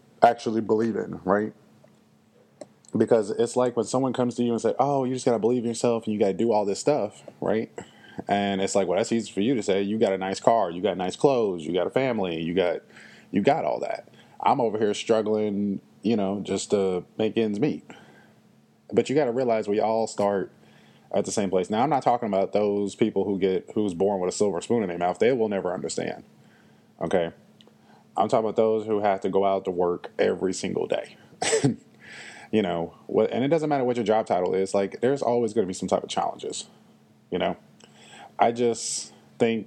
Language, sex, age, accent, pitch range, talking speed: English, male, 20-39, American, 95-115 Hz, 220 wpm